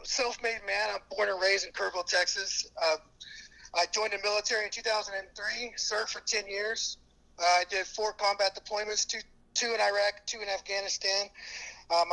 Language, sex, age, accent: English, male, 30-49, American